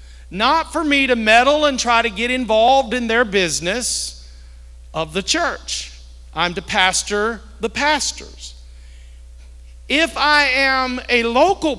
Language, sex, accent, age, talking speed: English, male, American, 50-69, 130 wpm